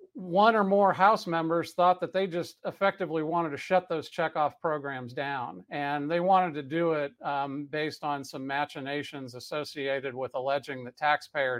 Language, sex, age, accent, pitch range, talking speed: English, male, 50-69, American, 140-175 Hz, 170 wpm